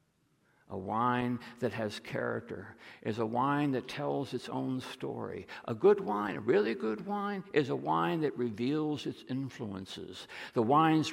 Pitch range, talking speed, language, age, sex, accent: 120-170 Hz, 155 wpm, English, 60-79, male, American